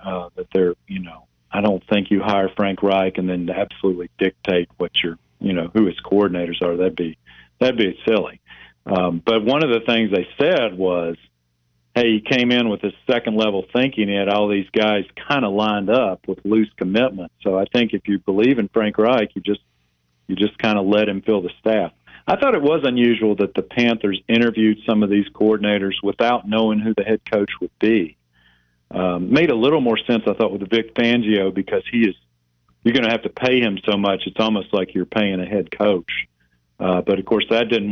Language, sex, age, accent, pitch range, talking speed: English, male, 40-59, American, 90-110 Hz, 215 wpm